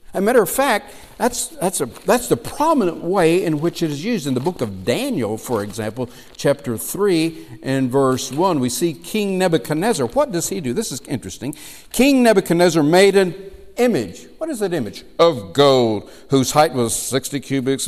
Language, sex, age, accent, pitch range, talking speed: English, male, 60-79, American, 120-175 Hz, 190 wpm